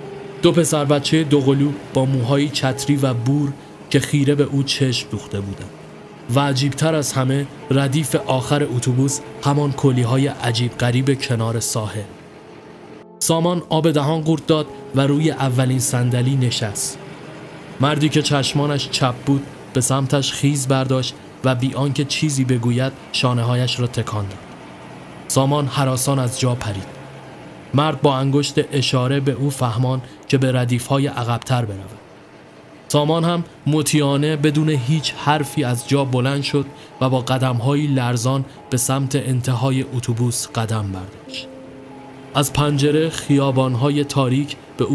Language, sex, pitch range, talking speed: Persian, male, 125-145 Hz, 130 wpm